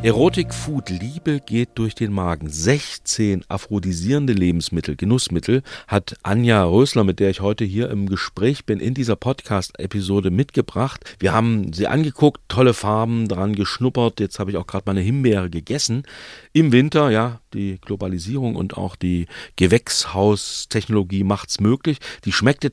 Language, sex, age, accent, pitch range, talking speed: German, male, 40-59, German, 95-125 Hz, 145 wpm